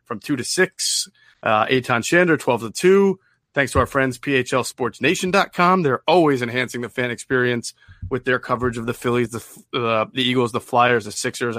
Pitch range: 120-145 Hz